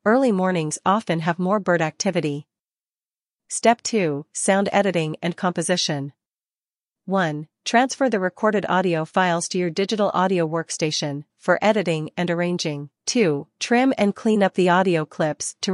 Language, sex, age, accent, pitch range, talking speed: English, female, 40-59, American, 165-200 Hz, 140 wpm